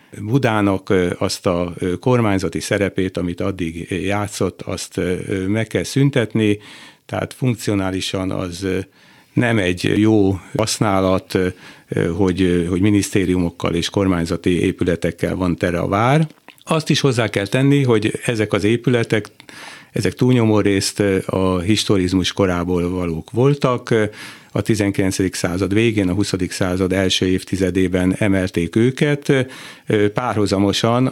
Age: 60-79